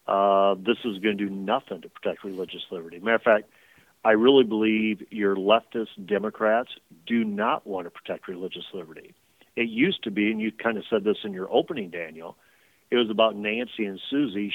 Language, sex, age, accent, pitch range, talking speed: English, male, 40-59, American, 100-120 Hz, 195 wpm